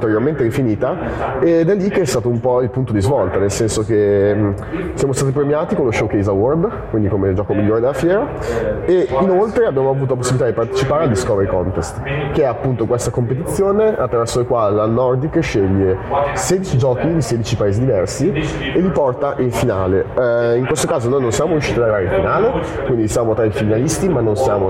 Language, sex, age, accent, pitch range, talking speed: Italian, male, 30-49, native, 110-140 Hz, 200 wpm